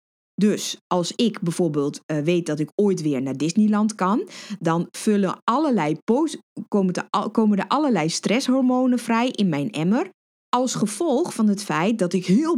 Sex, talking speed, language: female, 145 wpm, Dutch